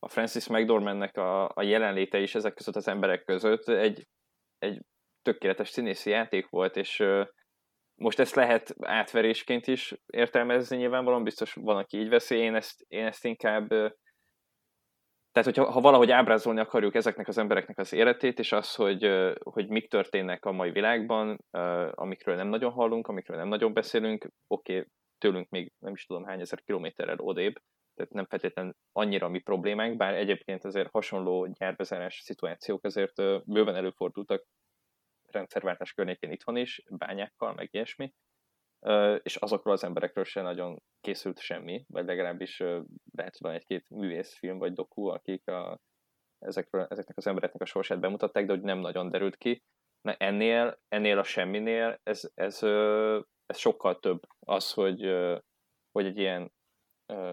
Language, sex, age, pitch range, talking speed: Hungarian, male, 20-39, 95-115 Hz, 155 wpm